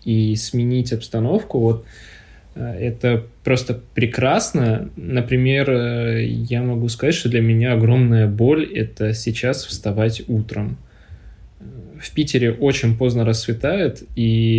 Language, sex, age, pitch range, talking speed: Russian, male, 20-39, 110-125 Hz, 105 wpm